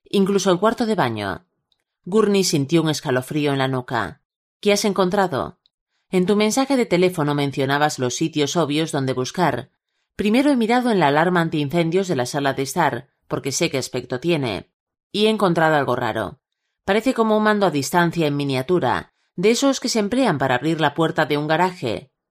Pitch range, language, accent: 135-185 Hz, Spanish, Spanish